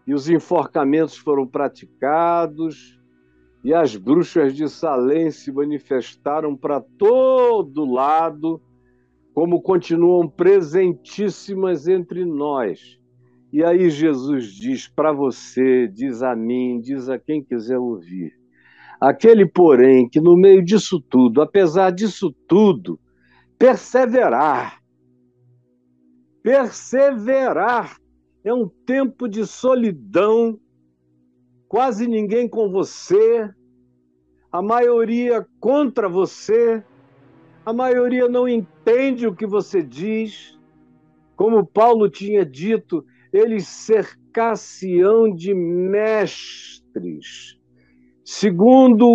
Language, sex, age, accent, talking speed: Portuguese, male, 60-79, Brazilian, 95 wpm